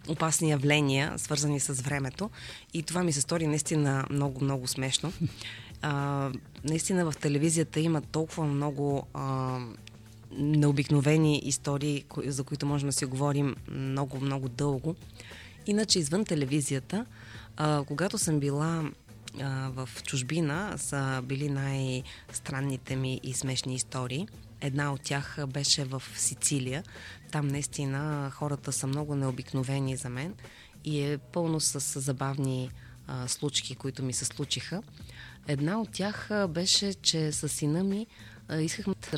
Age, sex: 20-39, female